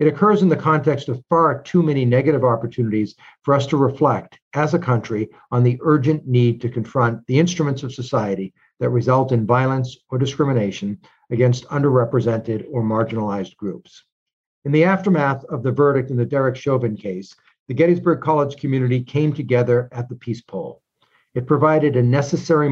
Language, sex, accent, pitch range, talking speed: English, male, American, 115-145 Hz, 170 wpm